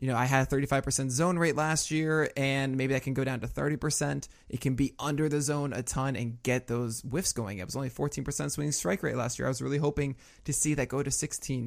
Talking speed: 255 wpm